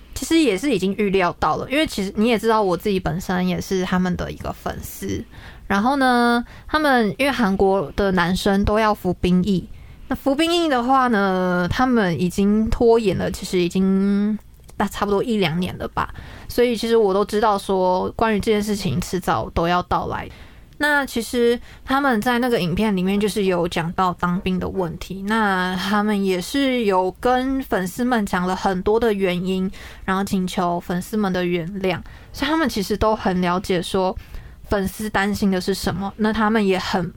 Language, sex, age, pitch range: Chinese, female, 20-39, 185-230 Hz